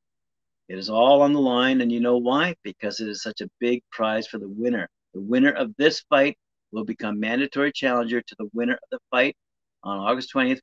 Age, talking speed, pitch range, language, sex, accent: 50-69, 215 wpm, 110-130 Hz, English, male, American